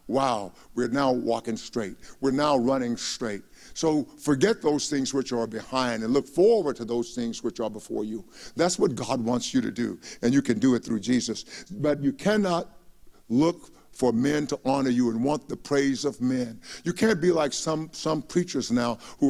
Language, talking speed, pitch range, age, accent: English, 200 wpm, 125-175 Hz, 60-79, American